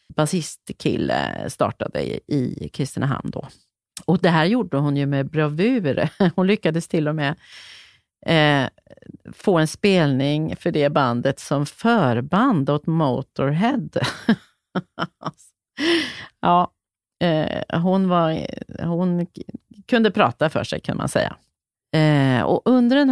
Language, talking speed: Swedish, 115 wpm